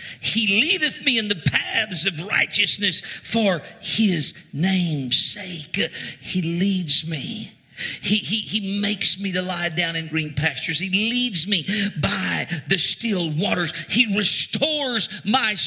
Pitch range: 190-245 Hz